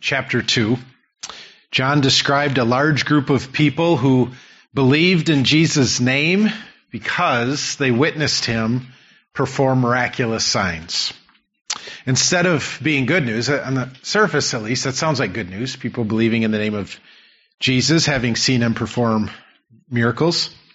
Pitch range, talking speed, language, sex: 115-150 Hz, 140 wpm, English, male